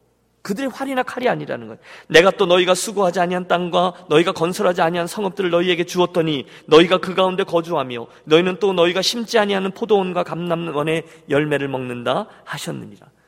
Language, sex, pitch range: Korean, male, 170-240 Hz